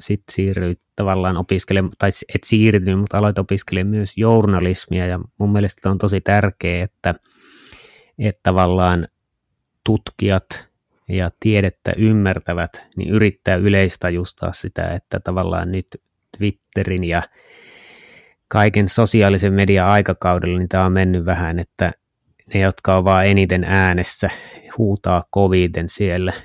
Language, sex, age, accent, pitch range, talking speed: Finnish, male, 20-39, native, 90-105 Hz, 125 wpm